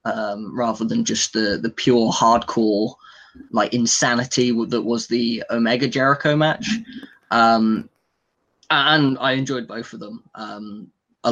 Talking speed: 135 wpm